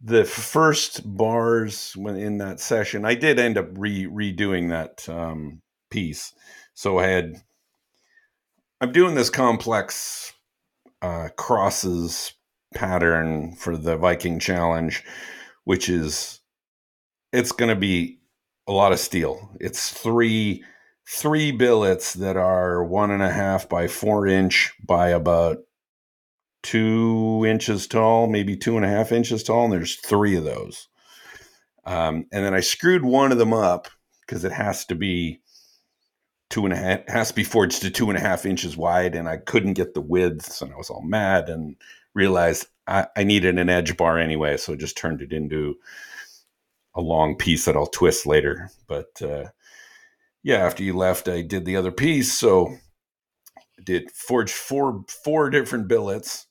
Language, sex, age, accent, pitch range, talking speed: English, male, 50-69, American, 85-115 Hz, 160 wpm